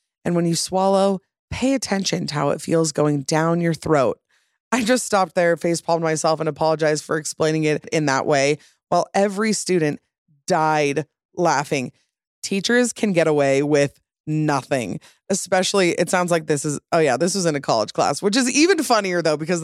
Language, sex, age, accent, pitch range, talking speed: English, female, 20-39, American, 160-200 Hz, 185 wpm